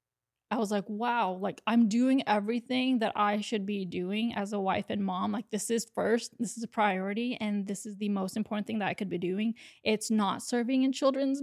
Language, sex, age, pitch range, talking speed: English, female, 20-39, 205-235 Hz, 225 wpm